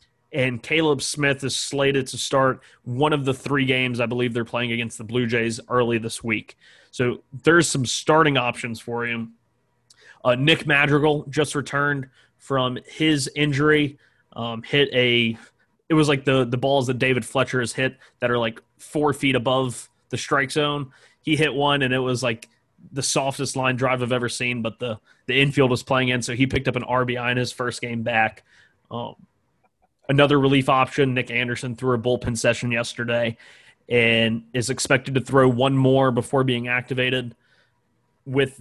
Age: 20-39